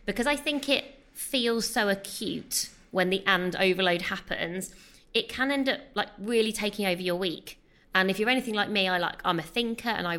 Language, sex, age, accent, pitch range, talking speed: English, female, 20-39, British, 180-225 Hz, 205 wpm